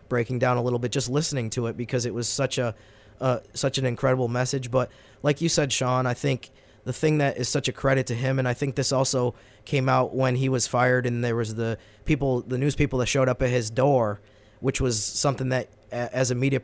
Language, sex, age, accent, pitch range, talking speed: English, male, 20-39, American, 115-135 Hz, 240 wpm